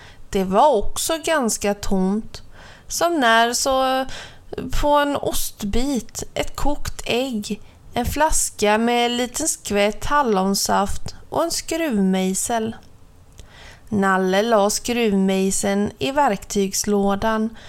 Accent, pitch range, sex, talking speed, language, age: native, 195-245 Hz, female, 95 wpm, Swedish, 30-49